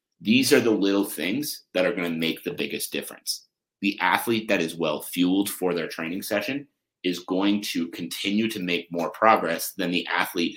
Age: 30-49